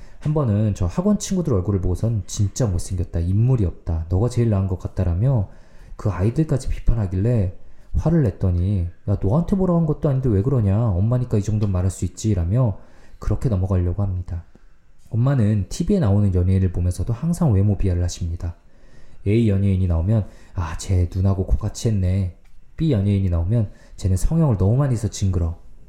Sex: male